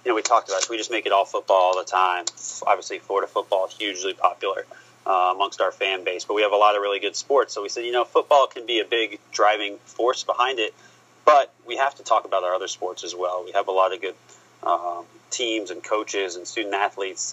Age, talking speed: 30-49, 255 wpm